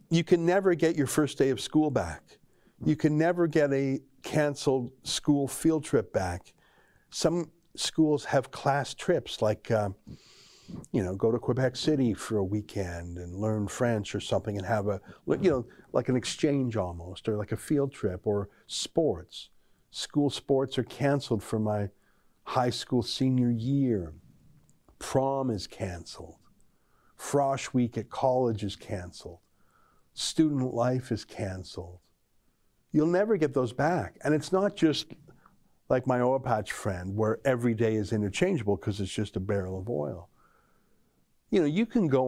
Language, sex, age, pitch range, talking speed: English, male, 50-69, 105-145 Hz, 160 wpm